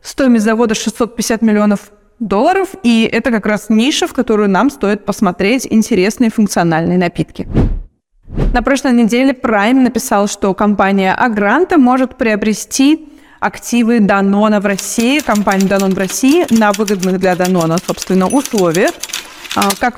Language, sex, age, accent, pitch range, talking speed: Russian, female, 20-39, native, 205-245 Hz, 130 wpm